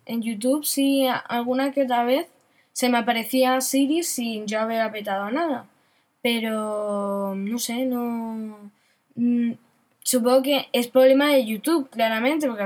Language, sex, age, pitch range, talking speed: Spanish, female, 10-29, 225-270 Hz, 135 wpm